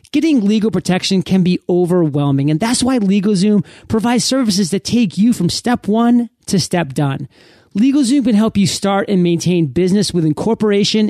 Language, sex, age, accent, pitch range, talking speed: English, male, 30-49, American, 155-215 Hz, 170 wpm